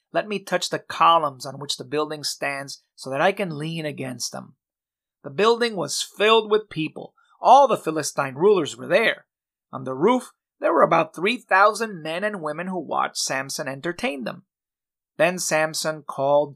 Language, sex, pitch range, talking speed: English, male, 150-205 Hz, 170 wpm